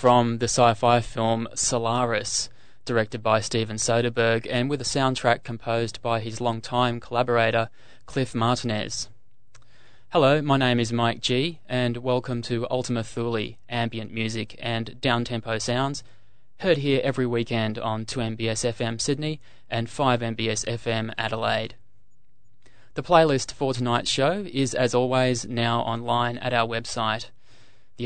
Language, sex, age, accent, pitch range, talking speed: English, male, 20-39, Australian, 115-130 Hz, 130 wpm